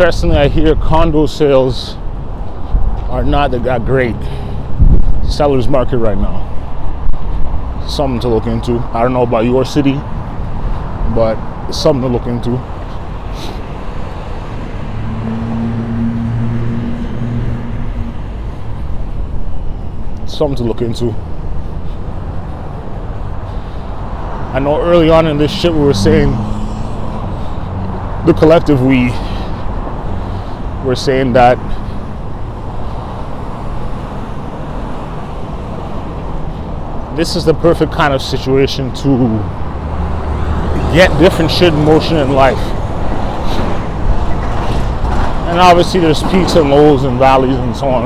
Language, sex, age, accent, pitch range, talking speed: English, male, 20-39, American, 85-130 Hz, 90 wpm